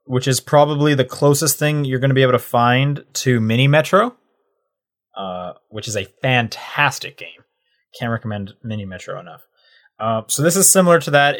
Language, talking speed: English, 180 wpm